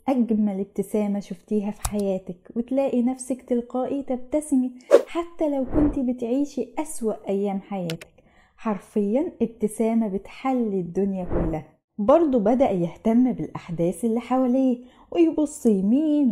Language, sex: Arabic, female